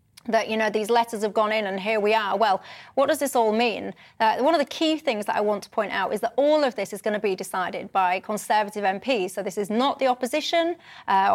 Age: 30-49